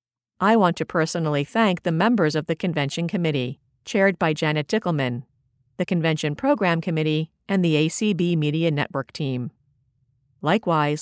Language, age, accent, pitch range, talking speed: English, 50-69, American, 145-200 Hz, 140 wpm